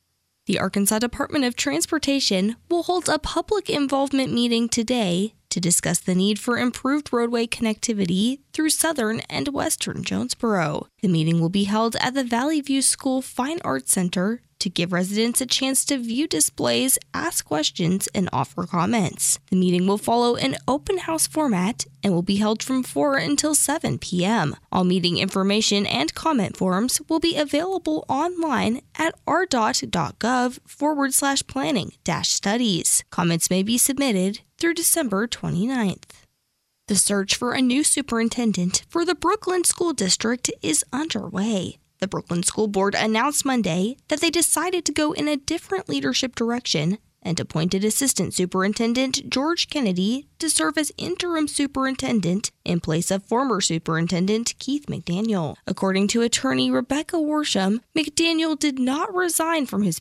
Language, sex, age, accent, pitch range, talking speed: English, female, 10-29, American, 190-300 Hz, 150 wpm